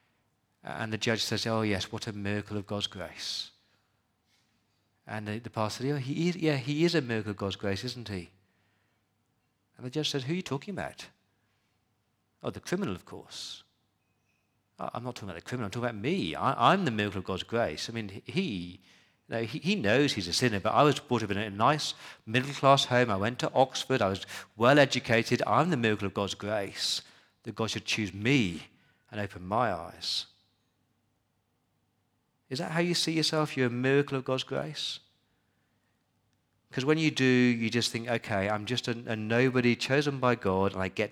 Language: English